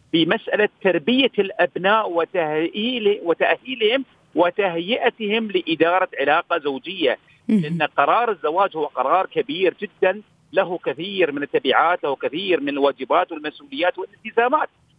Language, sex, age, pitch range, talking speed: Arabic, male, 50-69, 180-260 Hz, 105 wpm